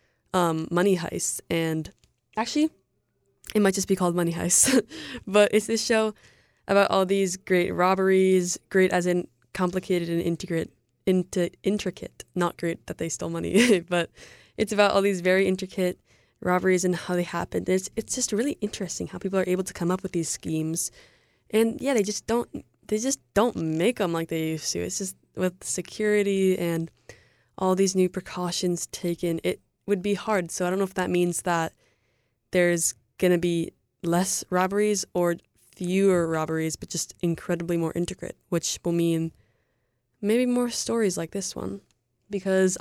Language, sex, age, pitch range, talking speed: English, female, 20-39, 165-195 Hz, 170 wpm